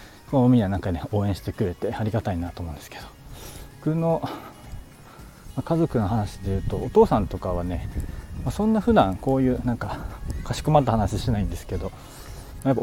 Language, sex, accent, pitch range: Japanese, male, native, 95-120 Hz